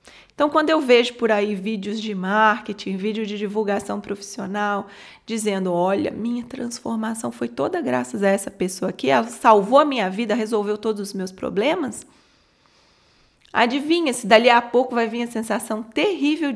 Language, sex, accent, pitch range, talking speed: Portuguese, female, Brazilian, 205-270 Hz, 160 wpm